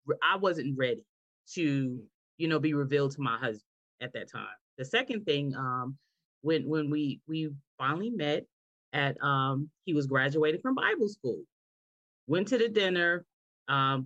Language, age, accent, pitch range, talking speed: English, 30-49, American, 155-240 Hz, 160 wpm